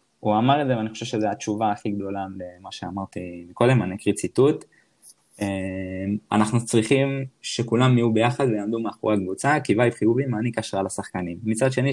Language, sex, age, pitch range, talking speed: Hebrew, male, 20-39, 95-115 Hz, 160 wpm